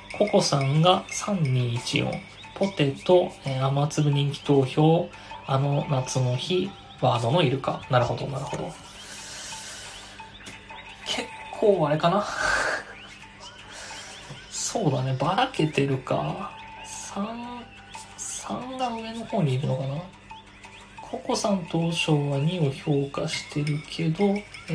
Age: 20-39